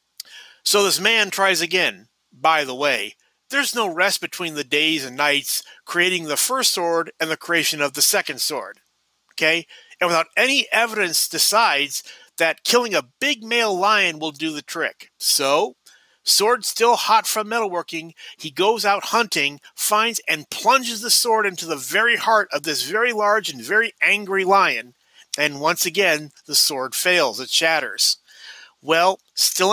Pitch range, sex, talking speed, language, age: 155-215 Hz, male, 160 wpm, English, 40-59